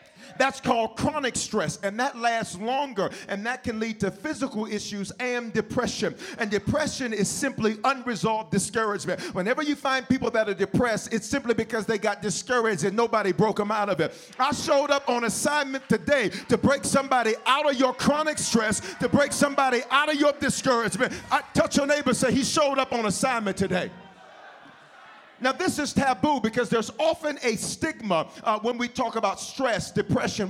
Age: 40-59